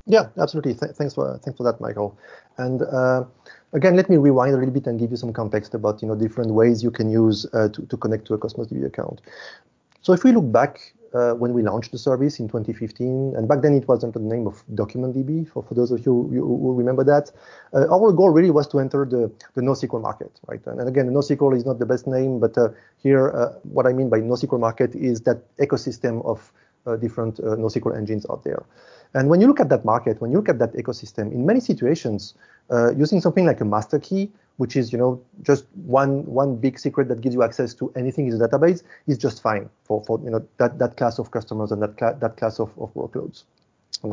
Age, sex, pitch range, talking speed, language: 30-49, male, 115-140 Hz, 240 wpm, English